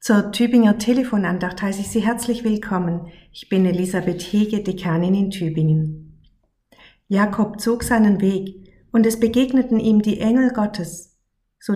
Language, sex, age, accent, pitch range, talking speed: German, female, 50-69, German, 180-225 Hz, 140 wpm